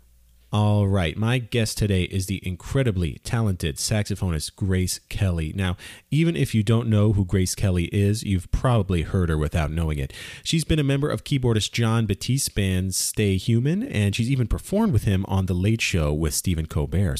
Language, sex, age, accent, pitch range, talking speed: English, male, 30-49, American, 90-110 Hz, 185 wpm